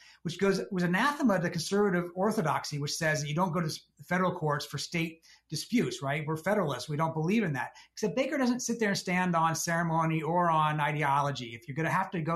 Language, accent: English, American